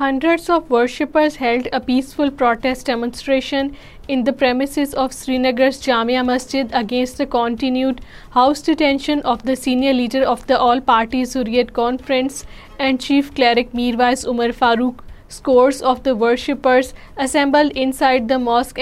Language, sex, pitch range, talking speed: Urdu, female, 245-270 Hz, 135 wpm